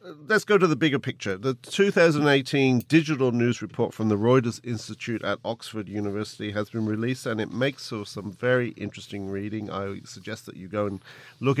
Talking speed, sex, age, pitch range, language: 180 wpm, male, 40-59, 110-145 Hz, English